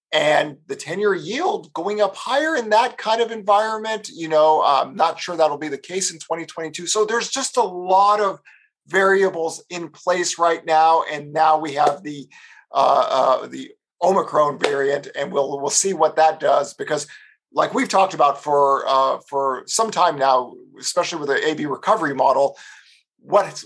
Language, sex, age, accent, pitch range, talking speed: English, male, 50-69, American, 145-205 Hz, 175 wpm